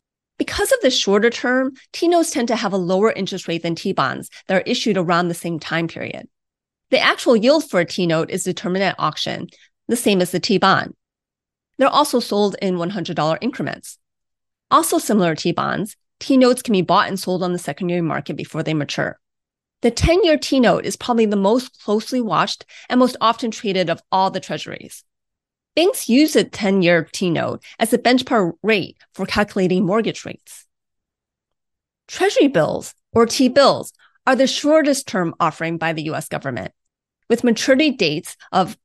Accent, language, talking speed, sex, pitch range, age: American, English, 165 wpm, female, 180-255 Hz, 30-49